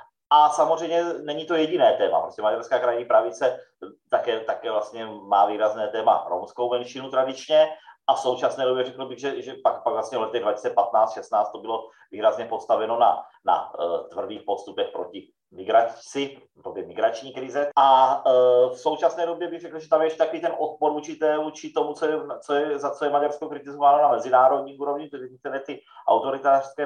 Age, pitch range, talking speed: 30-49, 130-160 Hz, 170 wpm